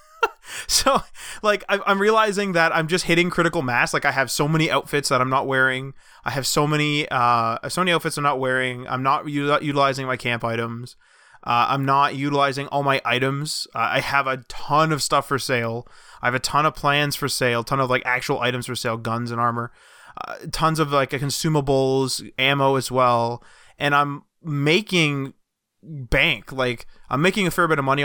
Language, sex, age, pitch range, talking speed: English, male, 20-39, 130-160 Hz, 195 wpm